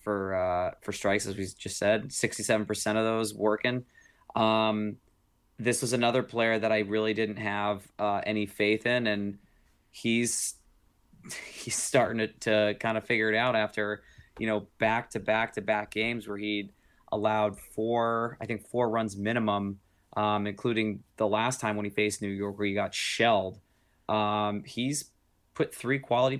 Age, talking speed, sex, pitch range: 20-39, 170 wpm, male, 105-115 Hz